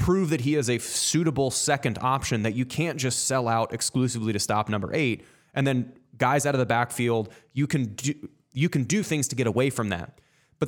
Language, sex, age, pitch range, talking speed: English, male, 20-39, 120-150 Hz, 220 wpm